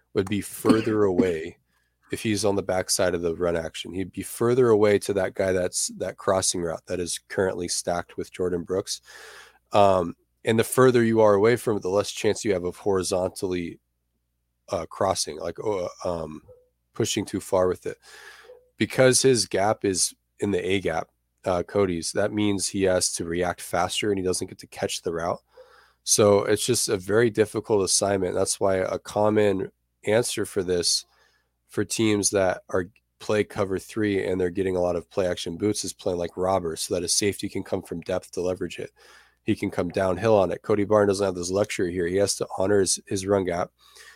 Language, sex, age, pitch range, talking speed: English, male, 20-39, 90-105 Hz, 200 wpm